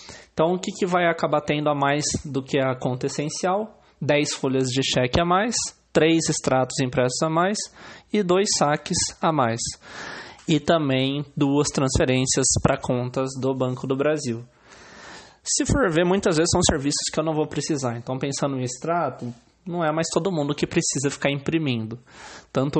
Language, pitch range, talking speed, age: Portuguese, 130-165 Hz, 175 wpm, 20-39